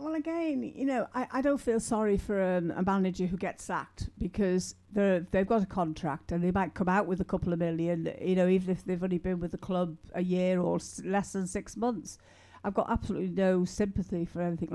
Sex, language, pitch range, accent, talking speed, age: female, English, 170-195 Hz, British, 235 wpm, 60-79